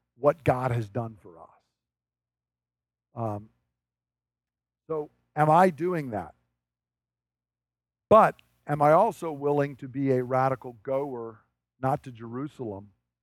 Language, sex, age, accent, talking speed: English, male, 50-69, American, 115 wpm